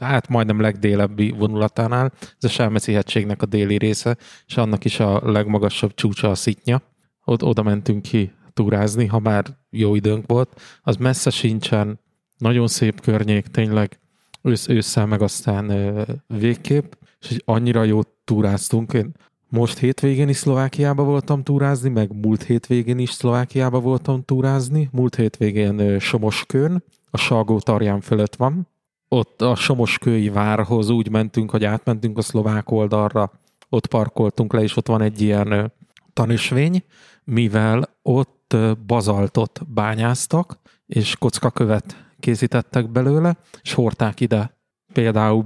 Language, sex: Hungarian, male